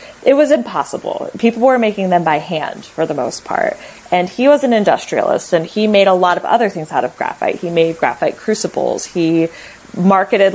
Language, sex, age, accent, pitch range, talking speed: English, female, 20-39, American, 160-195 Hz, 200 wpm